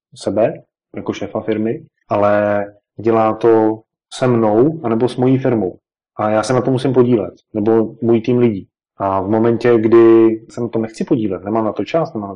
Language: Czech